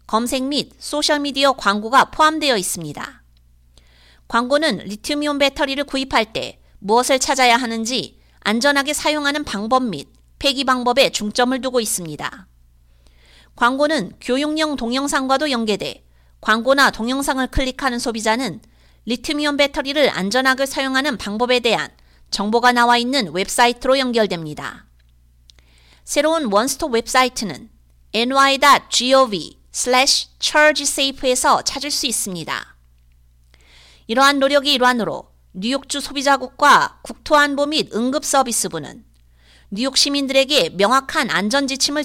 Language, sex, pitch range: Korean, female, 190-280 Hz